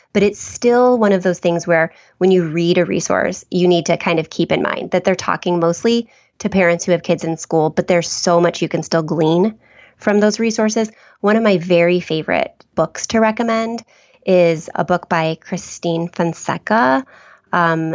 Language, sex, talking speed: English, female, 195 wpm